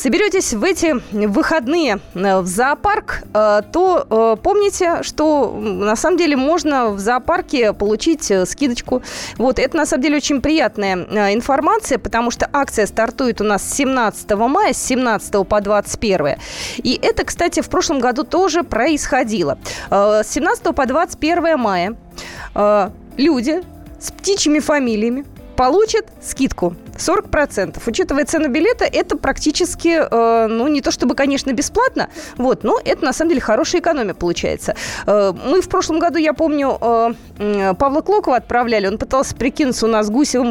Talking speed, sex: 140 wpm, female